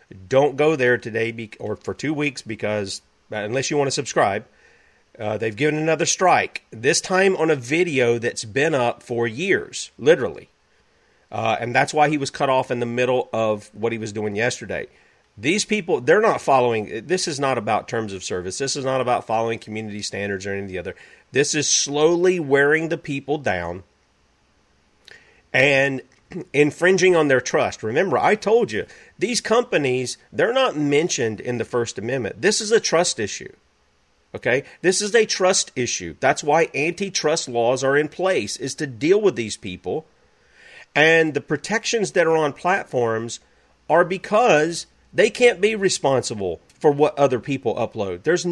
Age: 40-59